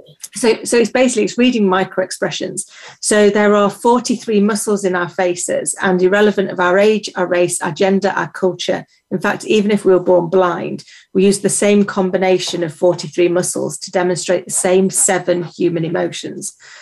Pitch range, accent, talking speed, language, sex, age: 175-200 Hz, British, 175 wpm, English, female, 40-59